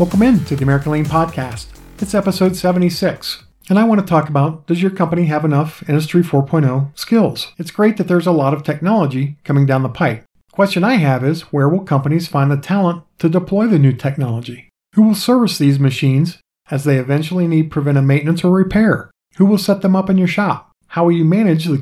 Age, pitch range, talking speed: 40-59, 145-190 Hz, 210 wpm